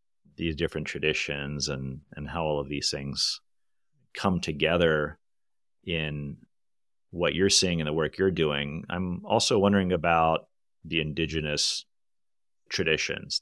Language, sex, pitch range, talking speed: English, male, 75-85 Hz, 125 wpm